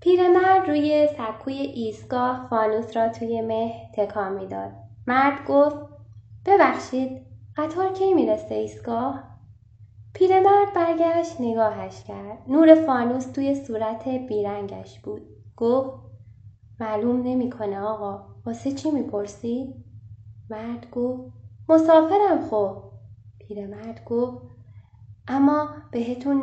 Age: 10-29